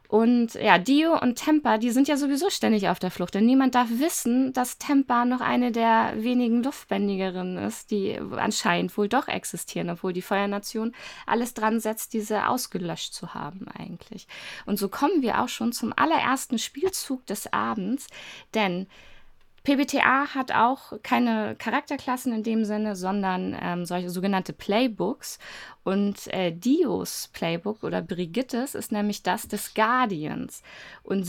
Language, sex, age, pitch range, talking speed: German, female, 20-39, 200-265 Hz, 150 wpm